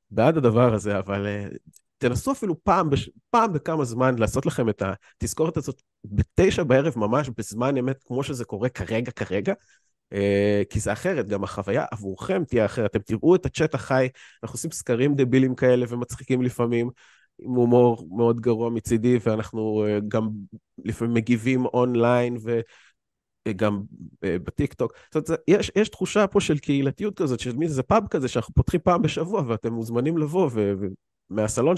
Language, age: Hebrew, 30-49